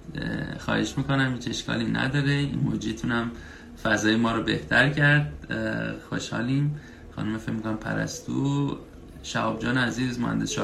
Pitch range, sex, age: 115-145 Hz, male, 30-49